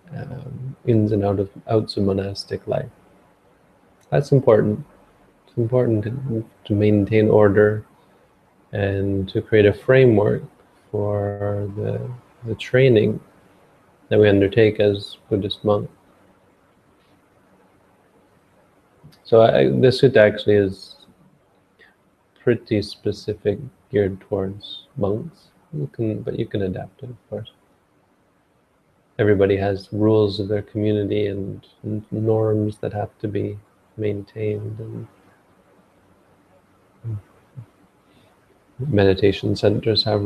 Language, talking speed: English, 105 wpm